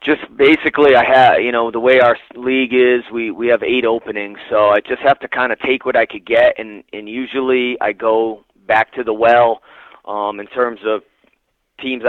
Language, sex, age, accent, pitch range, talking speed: English, male, 30-49, American, 105-125 Hz, 210 wpm